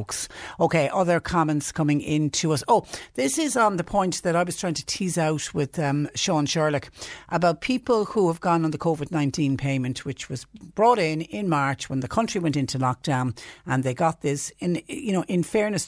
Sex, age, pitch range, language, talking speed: female, 60-79, 140-165 Hz, English, 210 wpm